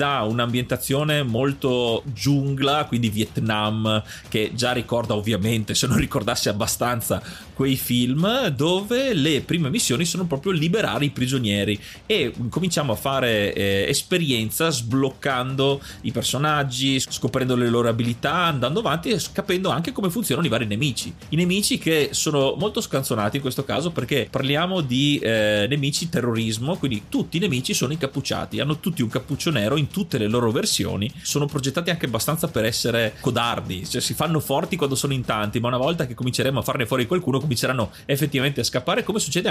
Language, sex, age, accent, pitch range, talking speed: Italian, male, 30-49, native, 115-150 Hz, 165 wpm